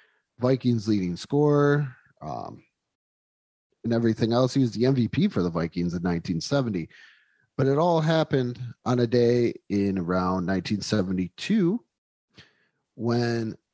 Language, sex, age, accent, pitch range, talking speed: English, male, 30-49, American, 105-135 Hz, 120 wpm